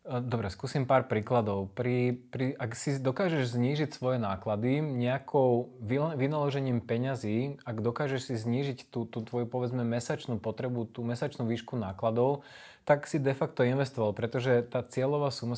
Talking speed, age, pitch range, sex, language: 145 wpm, 20-39, 120-135 Hz, male, Slovak